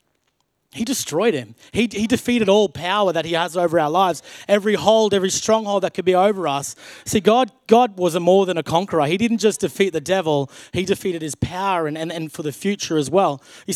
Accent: Australian